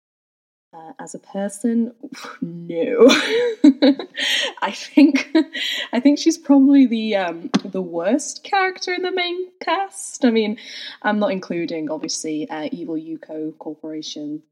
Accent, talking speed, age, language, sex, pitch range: British, 125 wpm, 10-29, English, female, 175-275 Hz